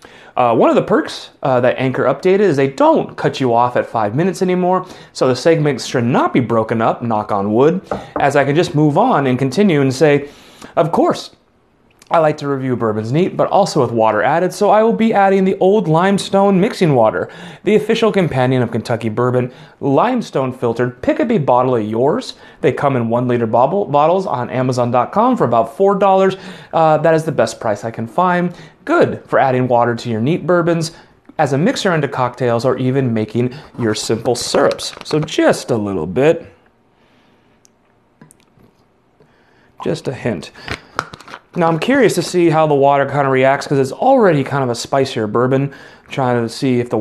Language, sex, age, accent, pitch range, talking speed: English, male, 30-49, American, 125-180 Hz, 190 wpm